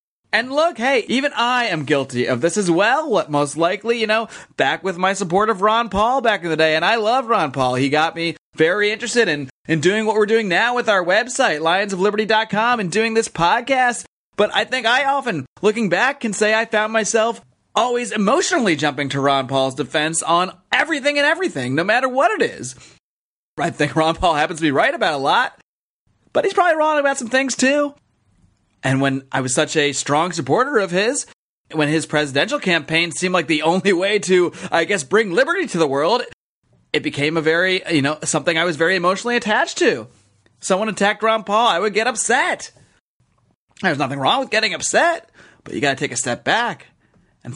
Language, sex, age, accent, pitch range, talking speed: English, male, 30-49, American, 155-235 Hz, 205 wpm